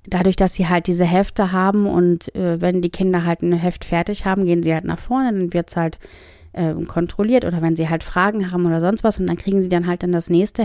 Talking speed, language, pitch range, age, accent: 260 wpm, German, 180-210 Hz, 30-49, German